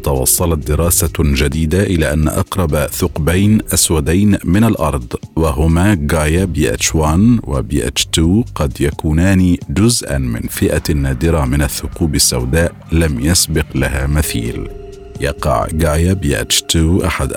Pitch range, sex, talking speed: 75-95 Hz, male, 115 wpm